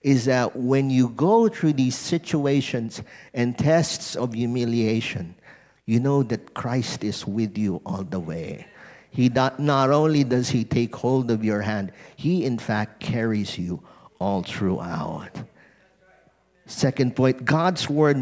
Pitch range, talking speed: 110-145 Hz, 145 wpm